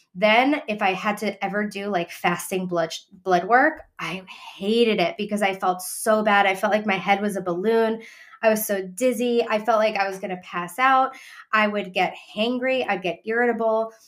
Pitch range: 190-235 Hz